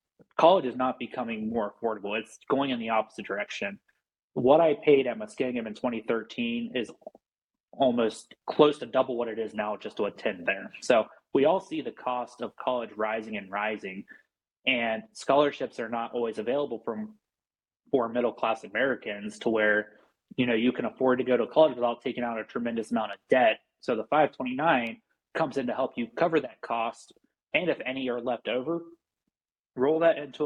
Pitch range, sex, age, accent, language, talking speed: 110-130 Hz, male, 20-39, American, English, 185 wpm